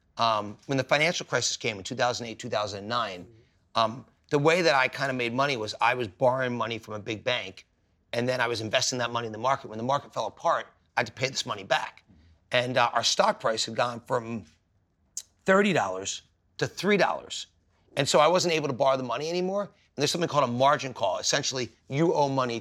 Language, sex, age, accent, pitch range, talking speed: English, male, 30-49, American, 105-140 Hz, 215 wpm